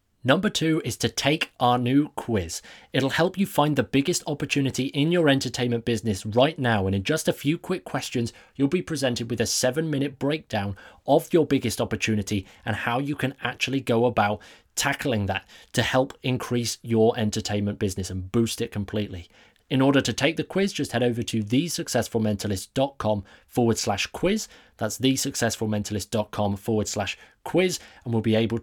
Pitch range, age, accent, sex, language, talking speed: 105-135 Hz, 20-39, British, male, English, 170 wpm